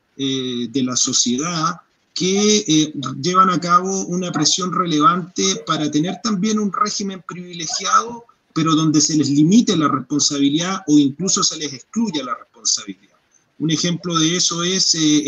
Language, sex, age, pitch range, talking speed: Spanish, male, 40-59, 150-190 Hz, 150 wpm